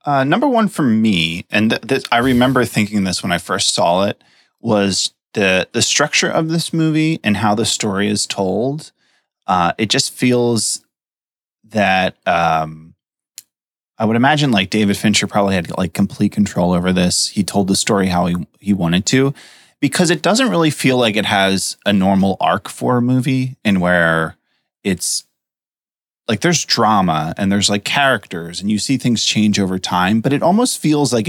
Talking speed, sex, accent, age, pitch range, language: 180 wpm, male, American, 20-39, 90-125 Hz, English